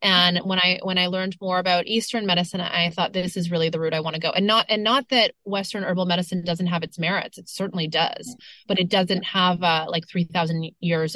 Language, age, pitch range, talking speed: English, 20-39, 170-195 Hz, 235 wpm